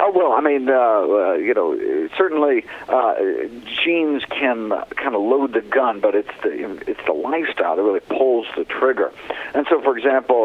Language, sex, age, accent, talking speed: English, male, 50-69, American, 185 wpm